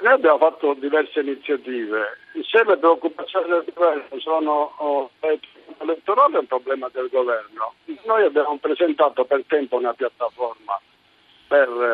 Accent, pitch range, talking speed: native, 135-180 Hz, 125 wpm